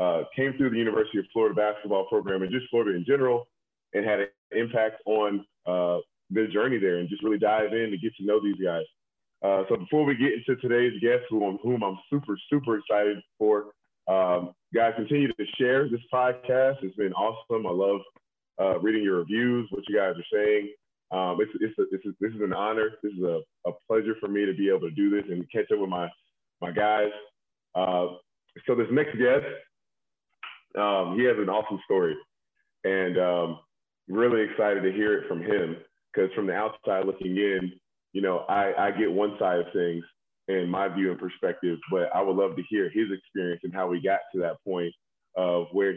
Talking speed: 210 wpm